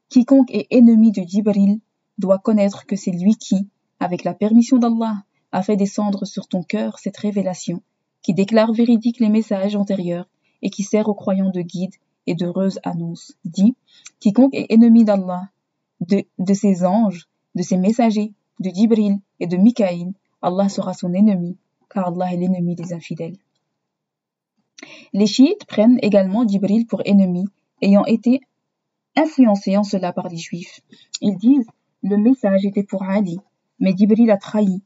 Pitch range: 185-220 Hz